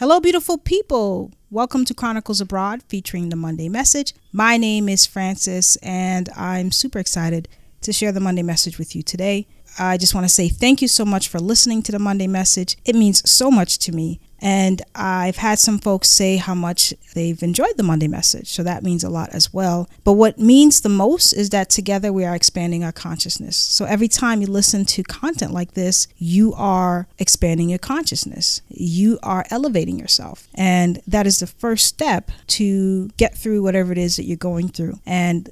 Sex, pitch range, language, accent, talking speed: female, 175-215 Hz, English, American, 195 wpm